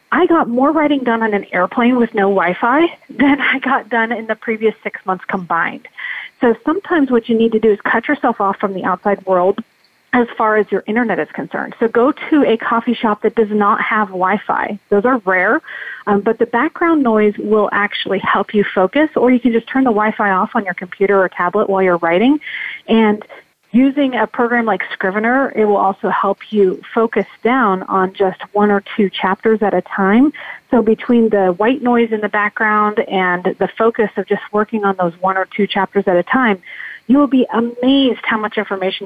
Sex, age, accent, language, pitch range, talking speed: female, 30-49, American, English, 195-240 Hz, 205 wpm